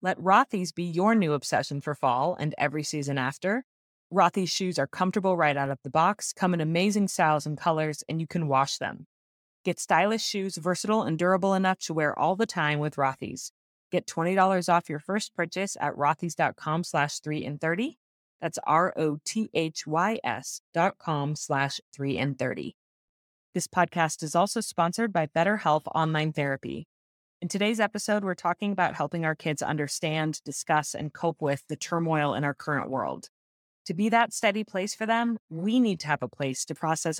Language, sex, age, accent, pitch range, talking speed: English, female, 30-49, American, 150-190 Hz, 180 wpm